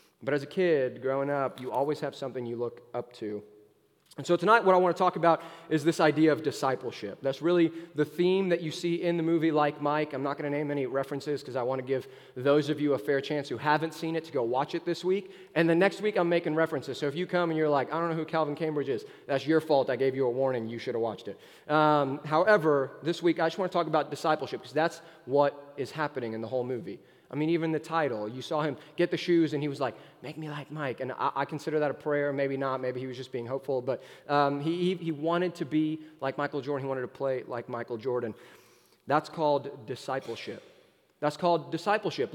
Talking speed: 255 wpm